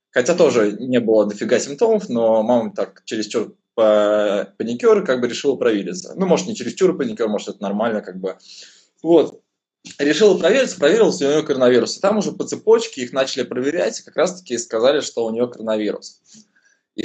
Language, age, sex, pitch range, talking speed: Russian, 20-39, male, 110-180 Hz, 170 wpm